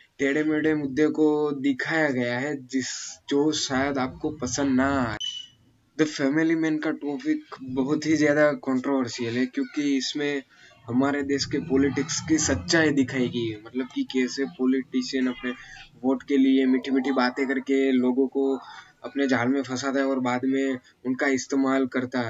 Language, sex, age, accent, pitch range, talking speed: Hindi, male, 10-29, native, 125-145 Hz, 160 wpm